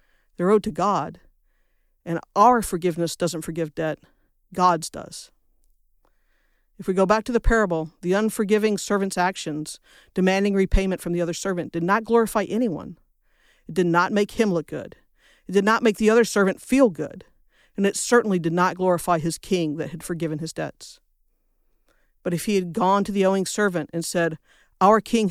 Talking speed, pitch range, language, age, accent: 180 wpm, 170-205 Hz, English, 50-69, American